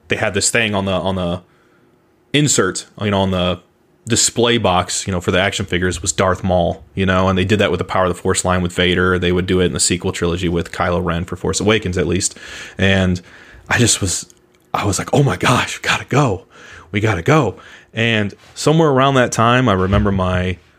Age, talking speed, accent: 30-49, 230 wpm, American